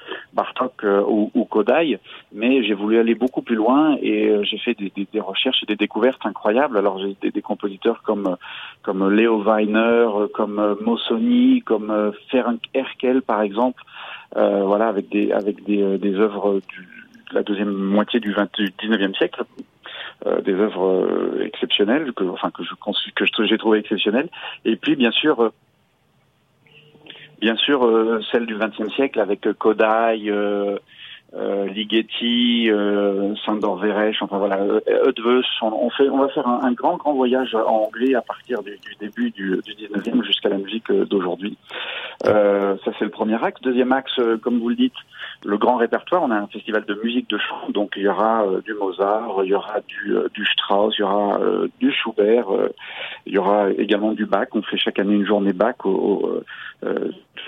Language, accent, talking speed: French, French, 180 wpm